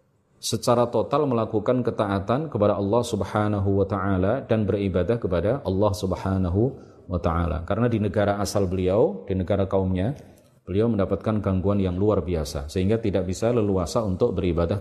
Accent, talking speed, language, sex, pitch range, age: native, 145 wpm, Indonesian, male, 100-115 Hz, 30-49